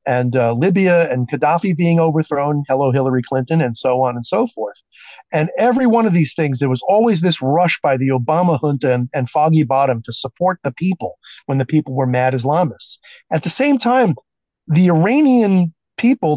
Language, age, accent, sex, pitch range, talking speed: English, 40-59, American, male, 130-175 Hz, 190 wpm